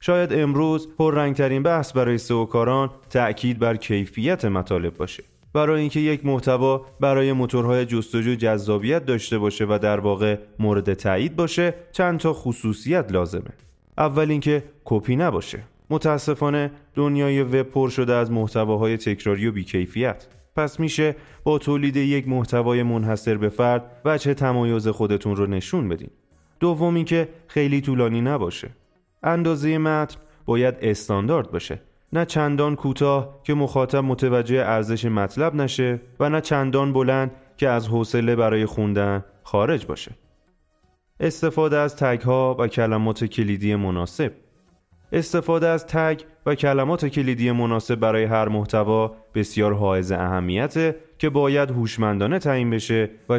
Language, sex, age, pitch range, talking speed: Persian, male, 30-49, 105-145 Hz, 130 wpm